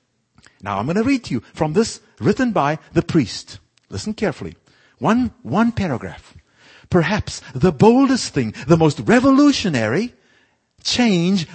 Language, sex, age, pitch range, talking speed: English, male, 50-69, 145-225 Hz, 135 wpm